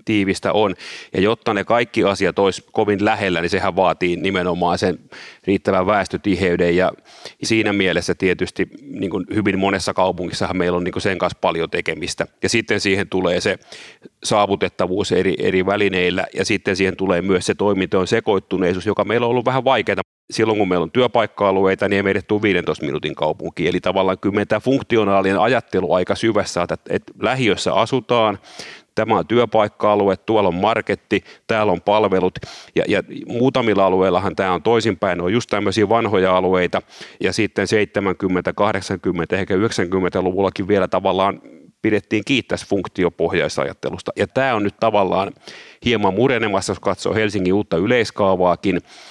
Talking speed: 150 wpm